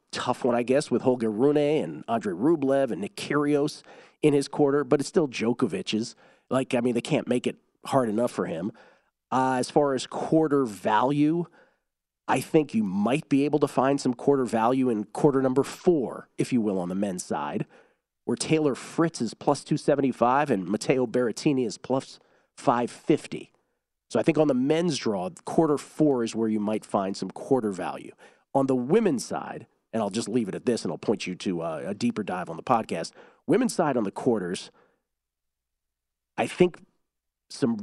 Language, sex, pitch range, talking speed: English, male, 110-150 Hz, 185 wpm